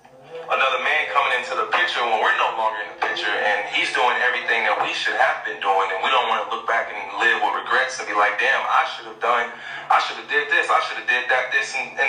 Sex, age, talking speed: male, 30-49, 275 wpm